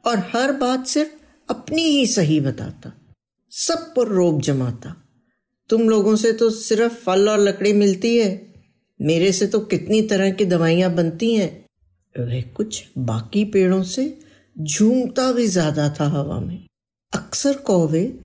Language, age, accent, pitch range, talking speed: Hindi, 60-79, native, 175-250 Hz, 140 wpm